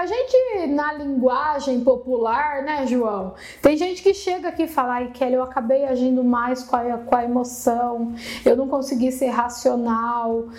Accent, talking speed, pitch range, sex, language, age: Brazilian, 165 wpm, 255-335 Hz, female, Portuguese, 10-29